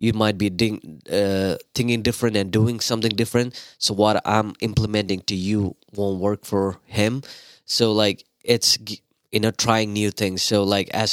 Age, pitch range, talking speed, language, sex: 20-39, 95-110 Hz, 160 wpm, English, male